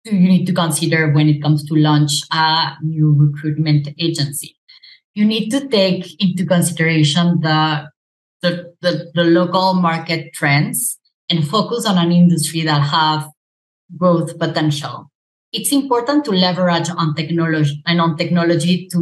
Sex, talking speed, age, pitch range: female, 140 wpm, 20-39, 155-180 Hz